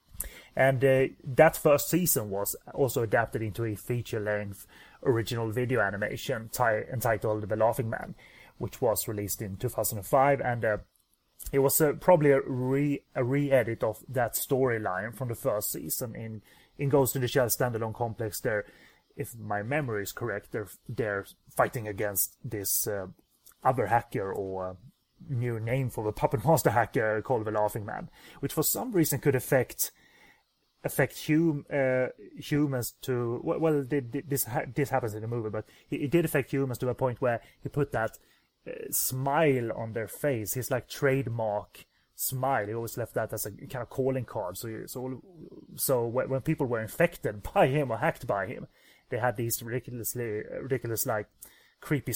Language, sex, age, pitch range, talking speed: English, male, 30-49, 110-140 Hz, 165 wpm